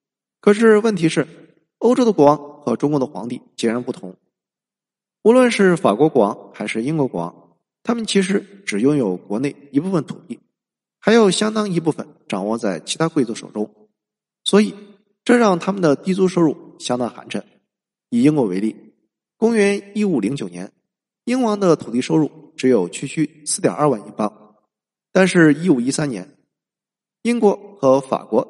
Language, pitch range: Chinese, 125-195 Hz